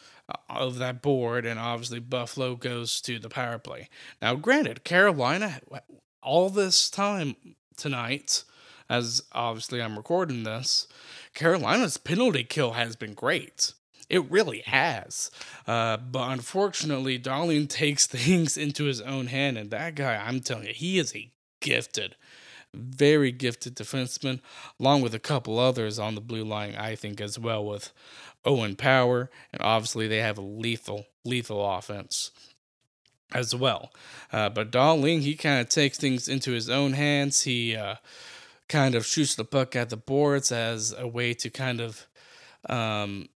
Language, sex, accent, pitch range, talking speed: English, male, American, 115-140 Hz, 155 wpm